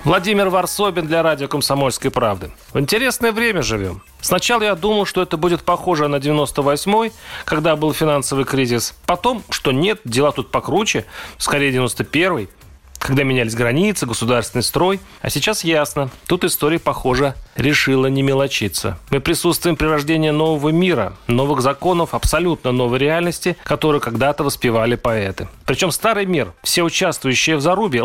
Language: Russian